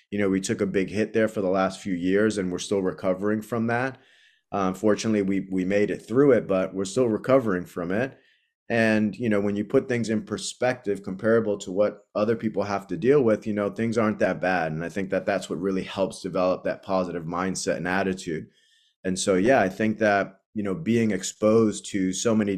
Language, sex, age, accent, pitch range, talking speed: English, male, 20-39, American, 95-105 Hz, 225 wpm